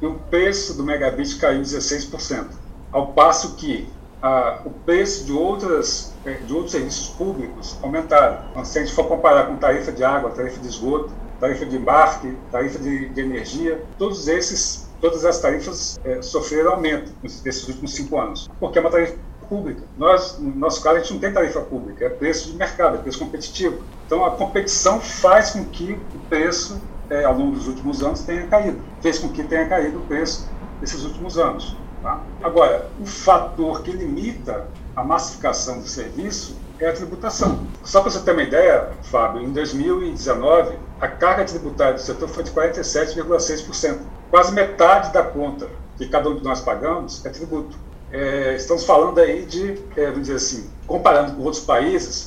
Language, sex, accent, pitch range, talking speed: Portuguese, male, Brazilian, 140-185 Hz, 180 wpm